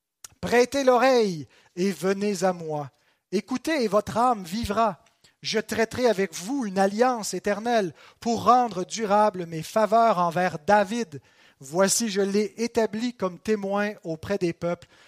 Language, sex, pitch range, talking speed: French, male, 170-220 Hz, 135 wpm